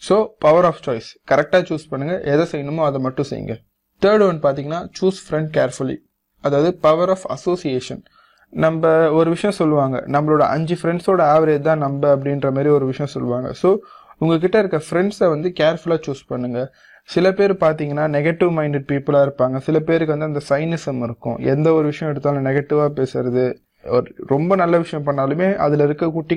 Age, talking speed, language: 20-39, 160 wpm, Tamil